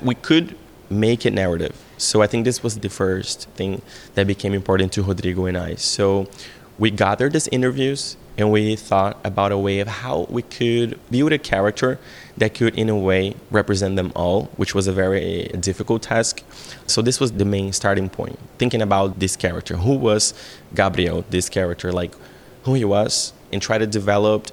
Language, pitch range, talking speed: English, 95-115 Hz, 185 wpm